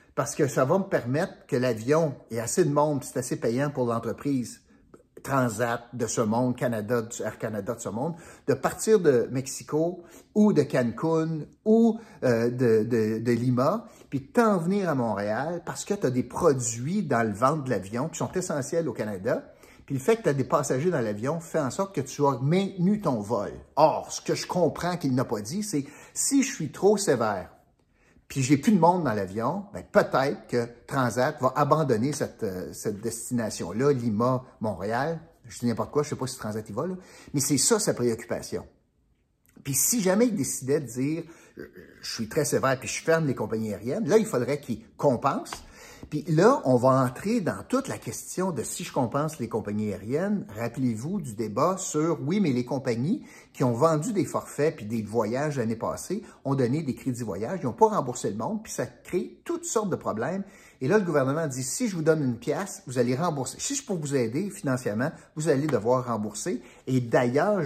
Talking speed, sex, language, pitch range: 205 wpm, male, French, 120-170 Hz